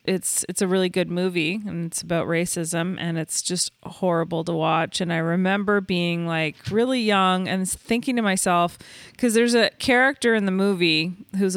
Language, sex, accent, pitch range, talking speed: English, female, American, 170-210 Hz, 180 wpm